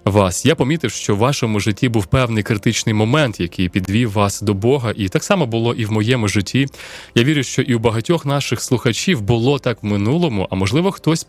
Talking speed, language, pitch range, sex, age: 205 wpm, Ukrainian, 105-145 Hz, male, 20-39